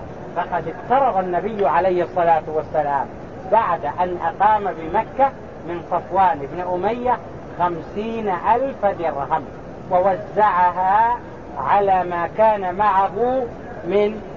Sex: male